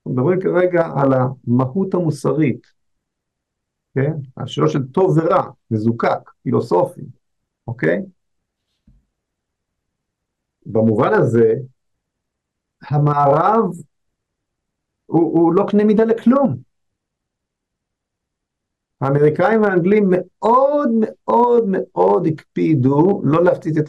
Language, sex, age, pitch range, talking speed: Hebrew, male, 50-69, 120-165 Hz, 85 wpm